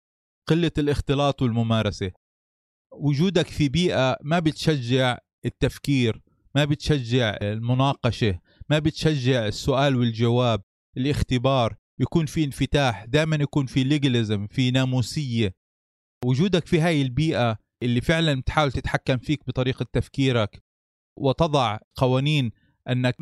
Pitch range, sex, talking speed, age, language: 115-145 Hz, male, 105 wpm, 30-49, Arabic